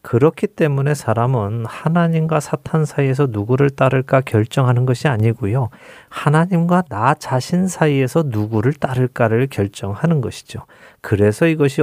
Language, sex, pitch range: Korean, male, 120-155 Hz